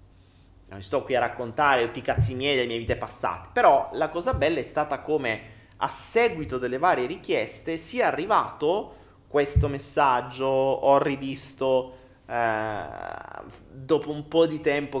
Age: 30-49